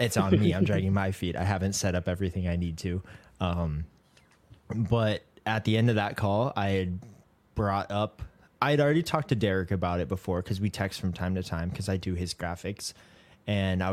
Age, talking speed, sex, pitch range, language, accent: 20-39, 210 wpm, male, 90-110 Hz, English, American